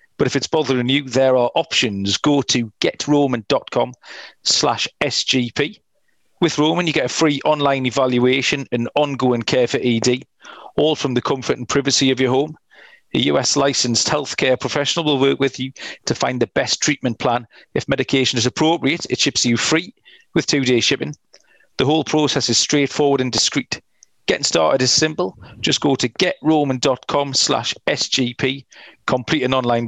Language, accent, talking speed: English, British, 160 wpm